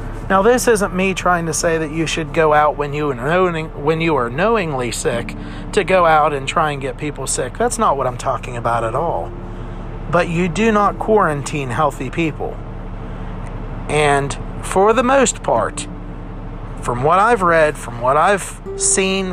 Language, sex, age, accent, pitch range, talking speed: English, male, 40-59, American, 130-190 Hz, 175 wpm